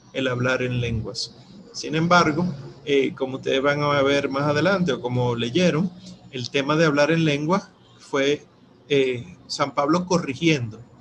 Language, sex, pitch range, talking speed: Spanish, male, 135-175 Hz, 155 wpm